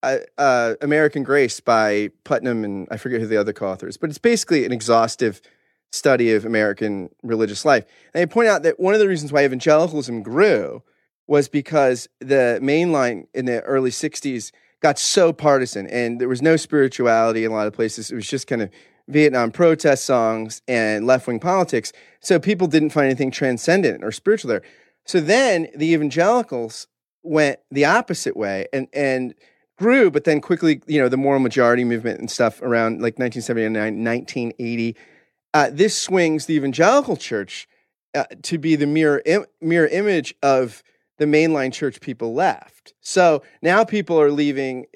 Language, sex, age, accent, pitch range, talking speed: English, male, 30-49, American, 120-160 Hz, 170 wpm